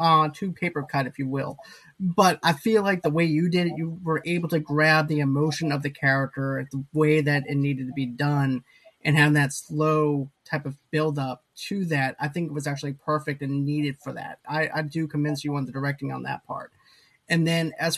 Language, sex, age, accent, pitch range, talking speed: English, male, 20-39, American, 145-170 Hz, 225 wpm